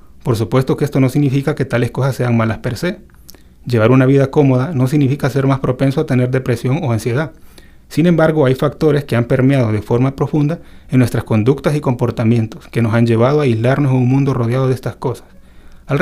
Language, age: Spanish, 30-49